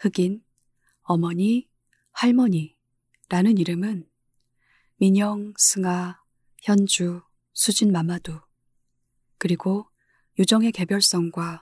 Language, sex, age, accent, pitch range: Korean, female, 20-39, native, 125-195 Hz